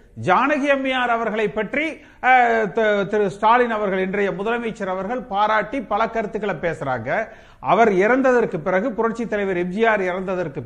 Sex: male